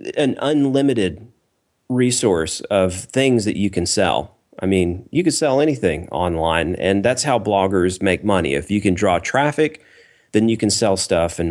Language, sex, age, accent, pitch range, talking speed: English, male, 30-49, American, 90-110 Hz, 170 wpm